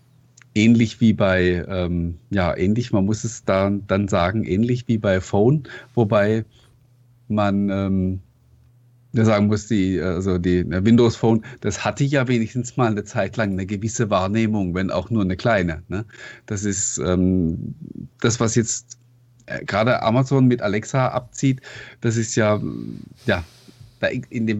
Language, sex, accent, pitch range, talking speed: German, male, German, 105-130 Hz, 150 wpm